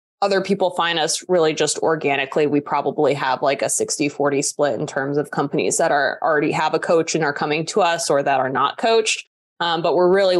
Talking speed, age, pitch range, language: 220 wpm, 20-39, 155-195 Hz, English